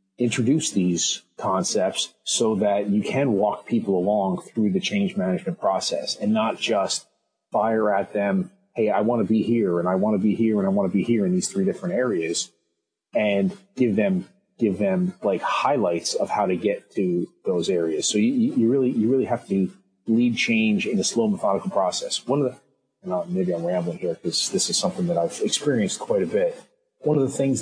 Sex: male